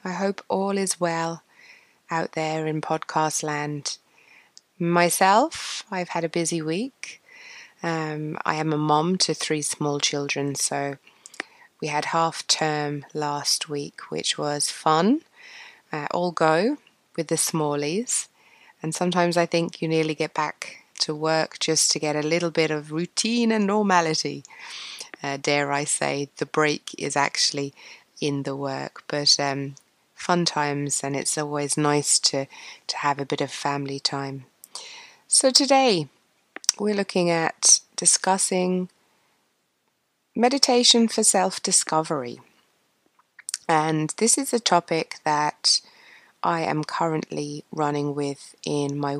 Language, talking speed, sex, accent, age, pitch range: English, 135 wpm, female, British, 20-39, 145-195 Hz